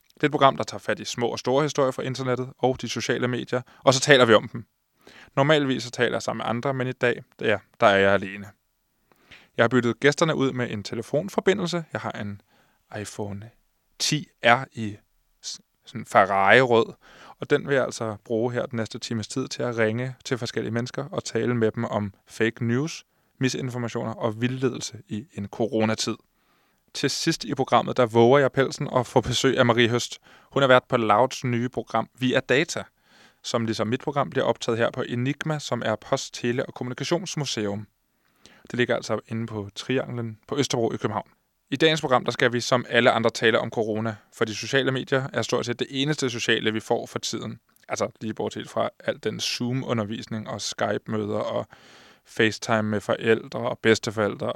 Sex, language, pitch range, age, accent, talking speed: male, Danish, 110-130 Hz, 20-39, native, 190 wpm